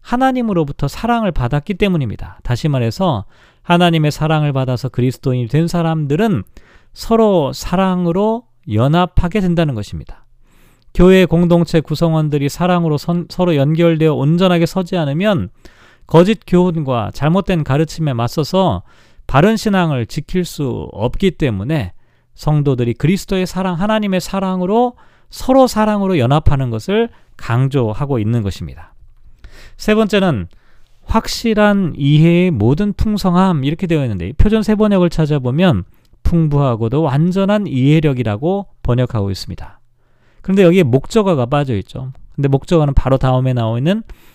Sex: male